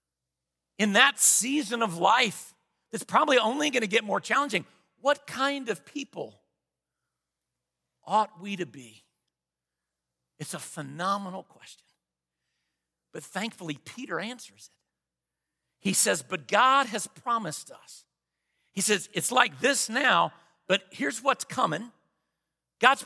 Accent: American